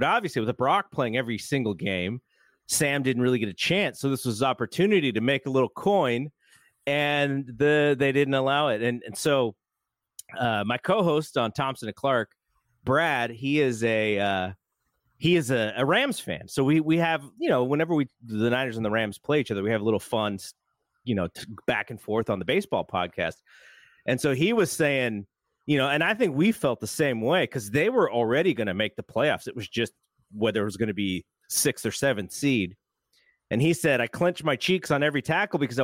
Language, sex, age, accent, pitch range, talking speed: English, male, 30-49, American, 115-150 Hz, 215 wpm